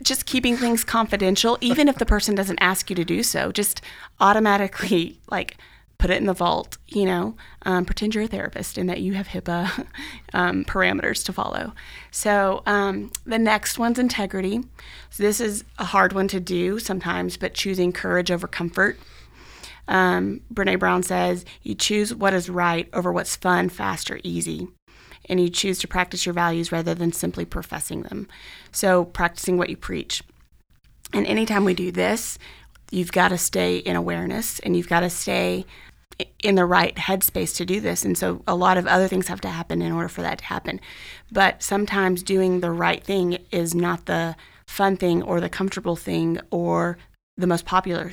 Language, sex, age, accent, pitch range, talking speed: English, female, 30-49, American, 170-200 Hz, 185 wpm